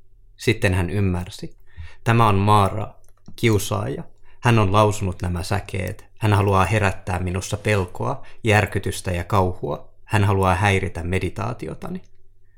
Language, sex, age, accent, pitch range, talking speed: Finnish, male, 30-49, native, 95-105 Hz, 115 wpm